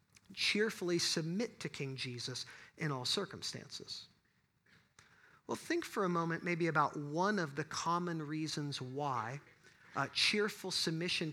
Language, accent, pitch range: English, American, 175-240 Hz